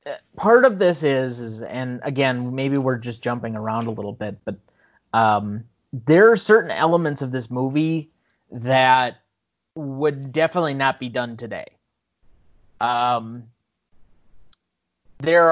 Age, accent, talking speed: 30-49, American, 130 wpm